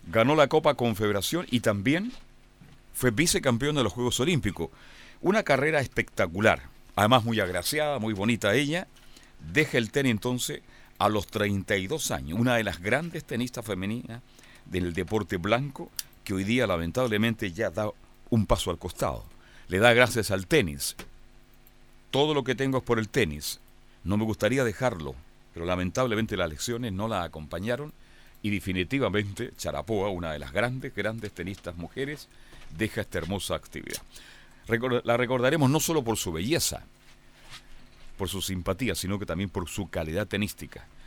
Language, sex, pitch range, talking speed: Spanish, male, 95-130 Hz, 150 wpm